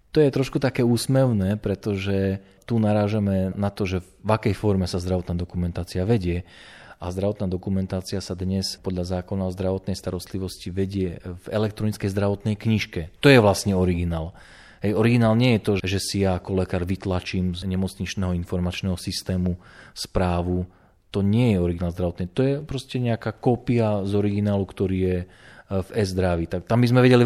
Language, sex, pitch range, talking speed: Slovak, male, 90-110 Hz, 160 wpm